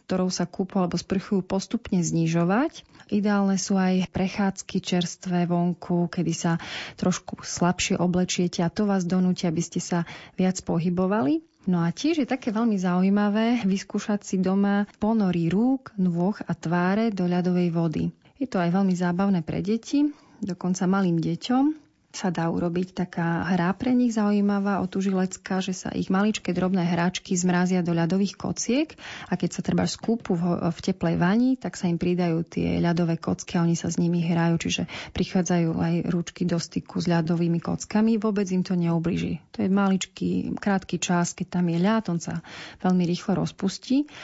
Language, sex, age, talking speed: Slovak, female, 30-49, 165 wpm